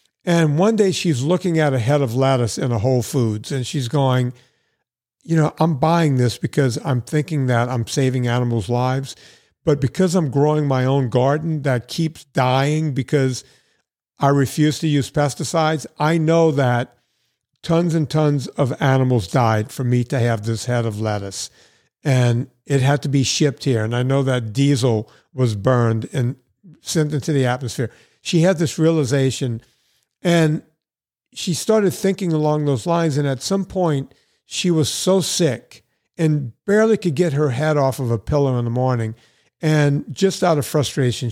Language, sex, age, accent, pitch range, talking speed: English, male, 50-69, American, 125-160 Hz, 175 wpm